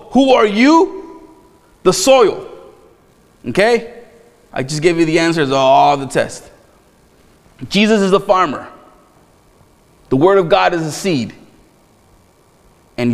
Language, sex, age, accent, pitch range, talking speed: English, male, 30-49, American, 180-230 Hz, 130 wpm